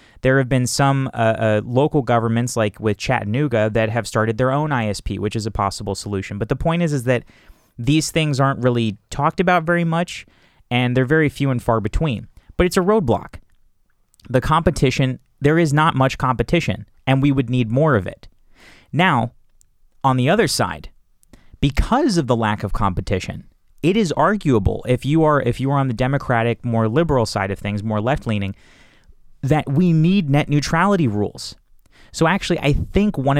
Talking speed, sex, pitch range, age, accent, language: 180 wpm, male, 110-150 Hz, 30-49, American, English